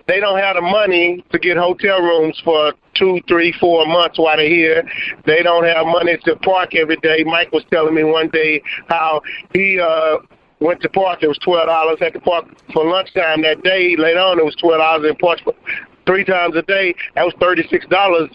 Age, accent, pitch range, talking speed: 50-69, American, 155-180 Hz, 205 wpm